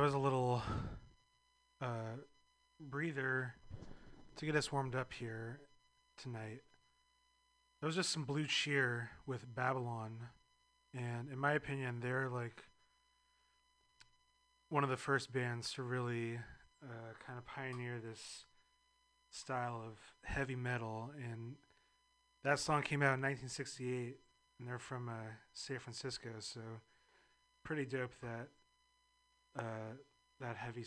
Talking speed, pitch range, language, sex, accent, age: 120 wpm, 120-160 Hz, English, male, American, 30-49